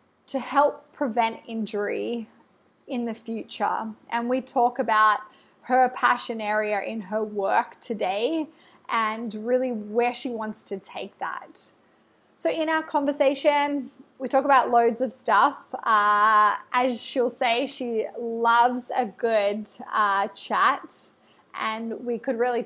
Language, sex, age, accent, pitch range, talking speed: English, female, 20-39, Australian, 220-255 Hz, 130 wpm